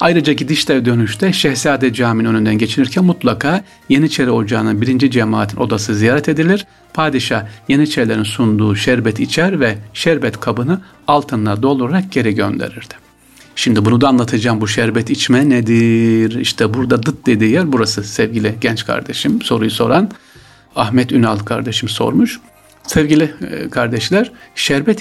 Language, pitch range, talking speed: Turkish, 110-135 Hz, 130 wpm